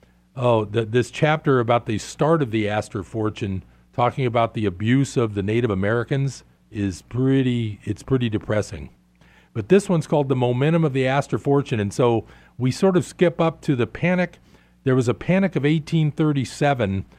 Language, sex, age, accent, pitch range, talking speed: English, male, 50-69, American, 100-140 Hz, 175 wpm